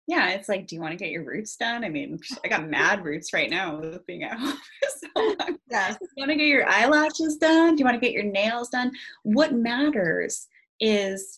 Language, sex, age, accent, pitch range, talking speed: English, female, 20-39, American, 175-240 Hz, 235 wpm